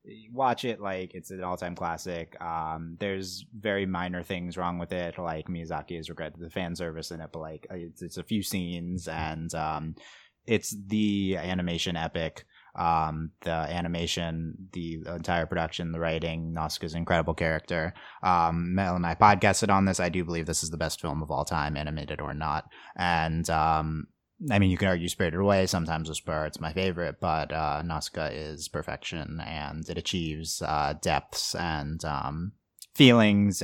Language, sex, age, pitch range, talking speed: English, male, 30-49, 80-95 Hz, 175 wpm